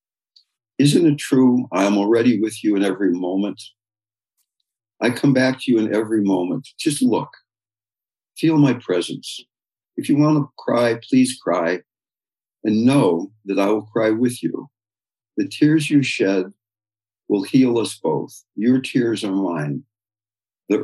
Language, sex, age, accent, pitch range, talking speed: English, male, 60-79, American, 100-115 Hz, 150 wpm